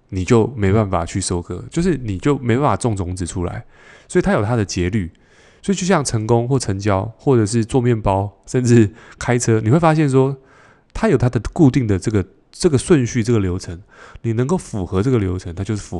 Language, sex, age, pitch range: Chinese, male, 20-39, 95-125 Hz